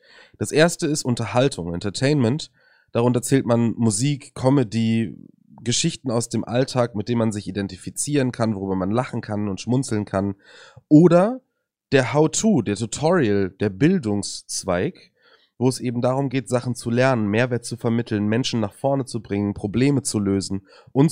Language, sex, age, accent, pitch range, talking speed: German, male, 30-49, German, 110-145 Hz, 155 wpm